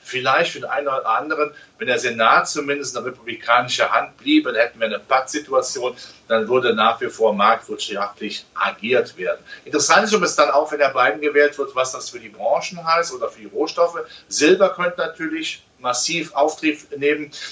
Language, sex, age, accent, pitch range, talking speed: German, male, 40-59, German, 125-185 Hz, 180 wpm